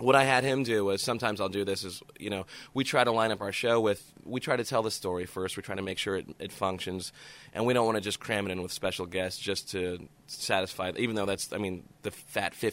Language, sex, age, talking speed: English, male, 20-39, 275 wpm